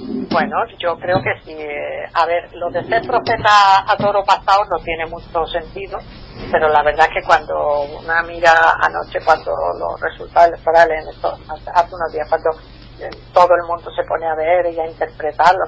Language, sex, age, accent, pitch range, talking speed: Spanish, female, 40-59, Spanish, 160-195 Hz, 180 wpm